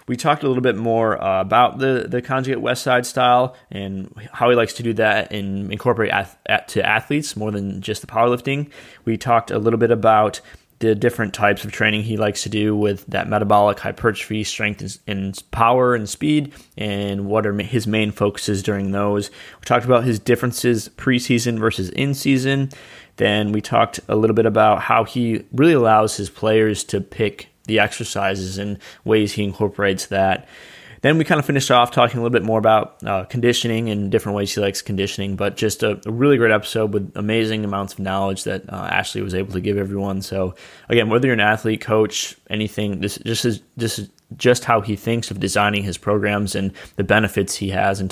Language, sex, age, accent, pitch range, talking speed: English, male, 20-39, American, 100-120 Hz, 200 wpm